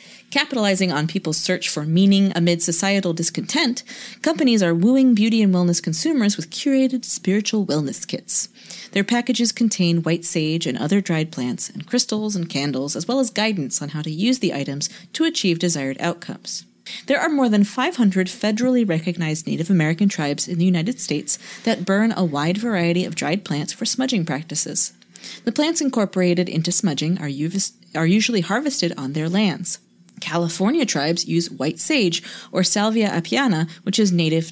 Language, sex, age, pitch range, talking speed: English, female, 30-49, 165-220 Hz, 165 wpm